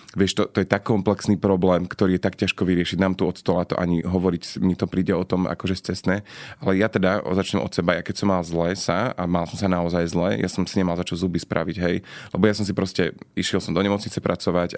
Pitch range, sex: 85-95 Hz, male